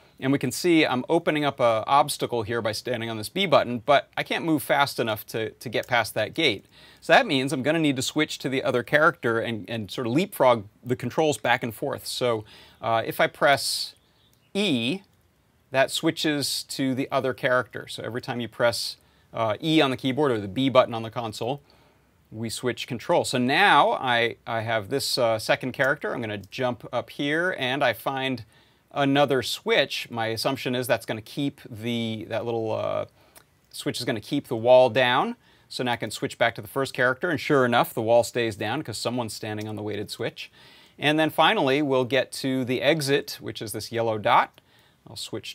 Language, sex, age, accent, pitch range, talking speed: English, male, 30-49, American, 115-140 Hz, 210 wpm